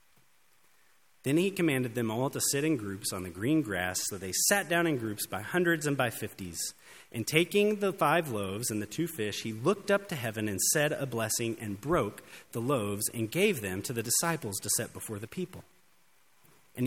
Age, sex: 30-49, male